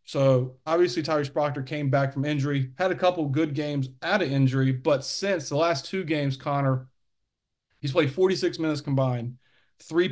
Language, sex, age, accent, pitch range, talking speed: English, male, 40-59, American, 130-155 Hz, 170 wpm